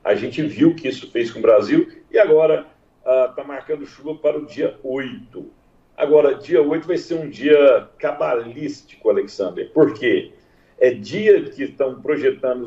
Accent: Brazilian